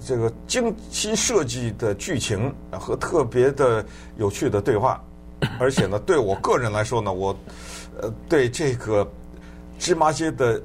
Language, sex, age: Chinese, male, 50-69